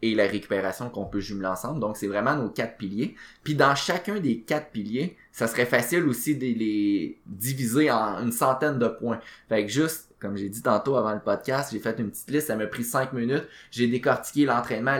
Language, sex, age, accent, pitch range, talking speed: French, male, 20-39, Canadian, 105-135 Hz, 215 wpm